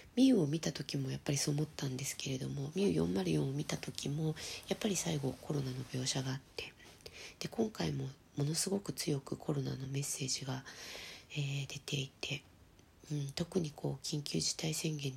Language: Japanese